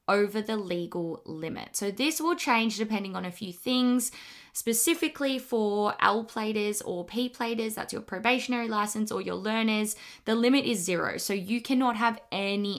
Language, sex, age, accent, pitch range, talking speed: English, female, 20-39, Australian, 190-230 Hz, 160 wpm